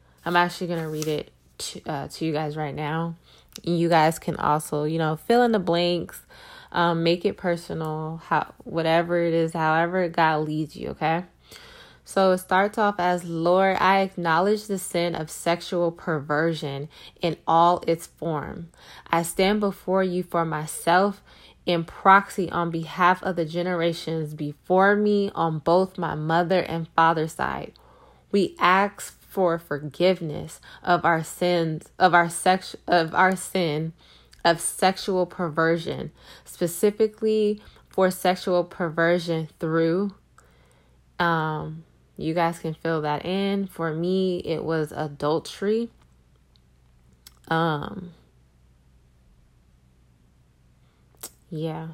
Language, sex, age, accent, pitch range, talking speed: English, female, 20-39, American, 155-185 Hz, 130 wpm